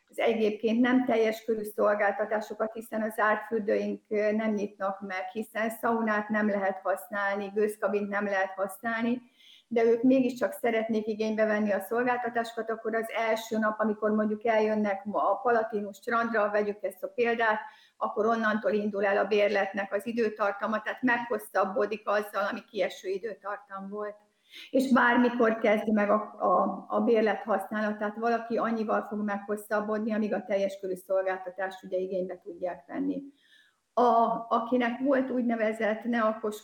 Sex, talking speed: female, 140 wpm